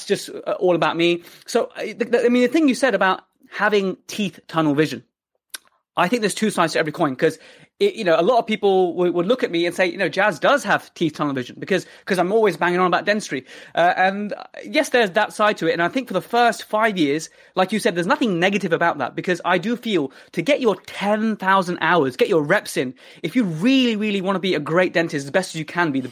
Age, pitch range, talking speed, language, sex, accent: 20-39, 160-215 Hz, 250 wpm, English, male, British